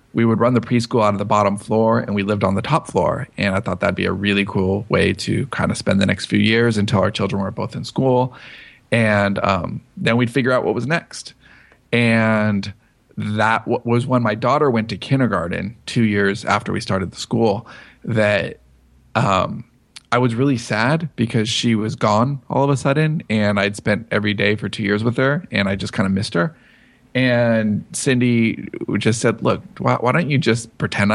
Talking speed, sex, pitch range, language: 210 wpm, male, 100-120 Hz, English